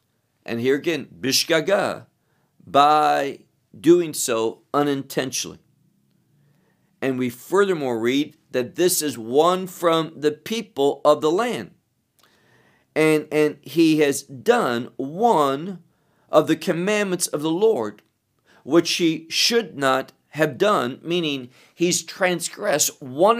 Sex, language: male, English